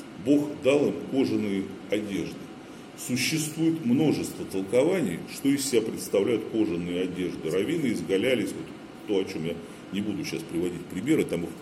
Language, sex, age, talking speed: Russian, male, 40-59, 145 wpm